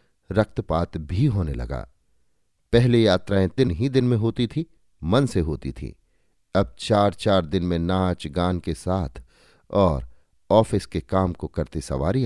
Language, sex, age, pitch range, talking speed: Hindi, male, 50-69, 80-110 Hz, 155 wpm